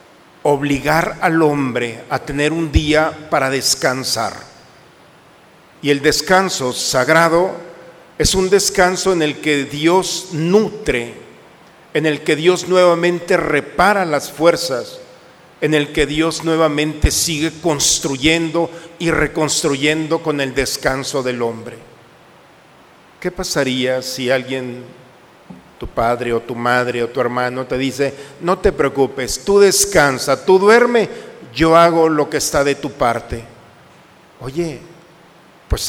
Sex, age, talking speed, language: male, 50-69, 125 wpm, Spanish